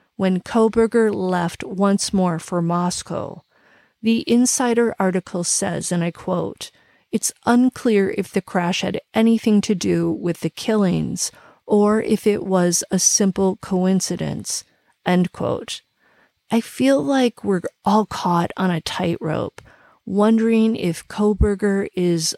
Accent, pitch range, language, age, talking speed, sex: American, 180-225 Hz, English, 40-59, 130 wpm, female